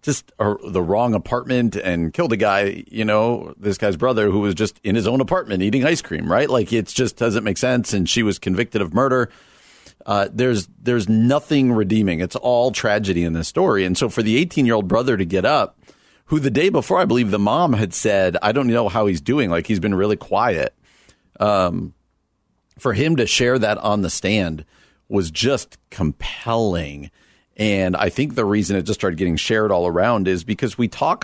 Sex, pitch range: male, 90-120 Hz